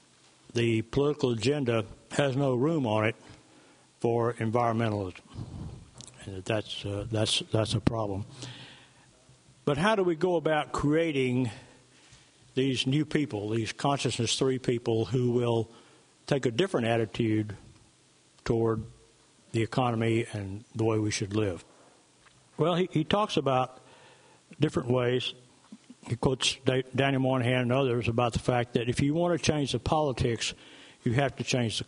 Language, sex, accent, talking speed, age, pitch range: English, male, American, 140 wpm, 60-79, 115-135 Hz